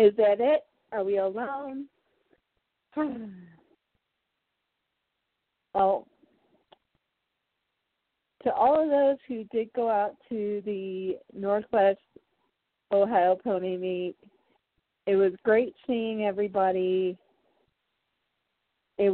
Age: 40-59